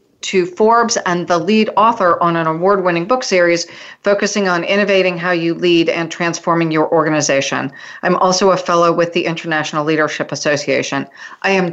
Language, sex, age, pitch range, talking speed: English, female, 40-59, 170-200 Hz, 165 wpm